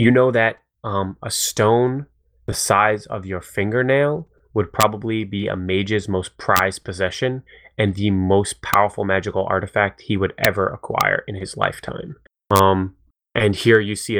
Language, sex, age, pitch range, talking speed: English, male, 20-39, 95-105 Hz, 155 wpm